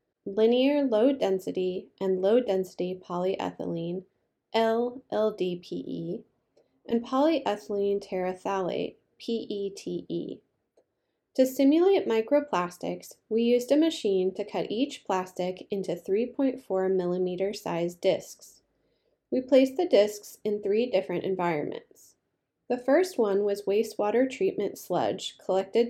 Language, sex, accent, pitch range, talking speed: English, female, American, 185-255 Hz, 95 wpm